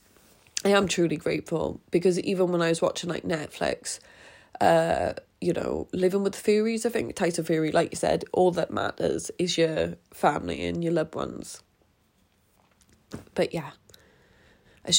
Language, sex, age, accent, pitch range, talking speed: English, female, 20-39, British, 155-180 Hz, 150 wpm